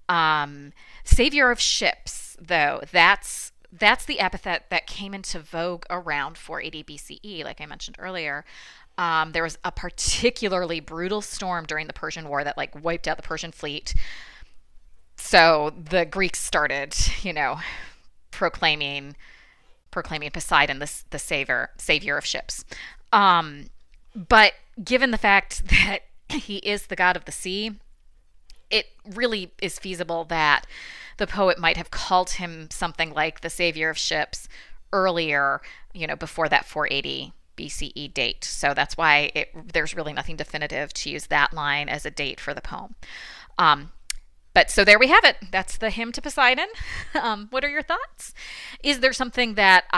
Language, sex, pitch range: English, female, 155-205 Hz